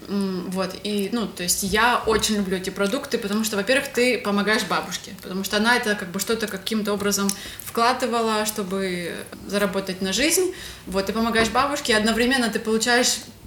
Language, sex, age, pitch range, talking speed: Ukrainian, female, 20-39, 195-235 Hz, 170 wpm